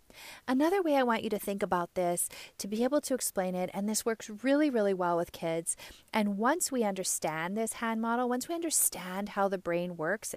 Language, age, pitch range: English, 30-49, 185-245 Hz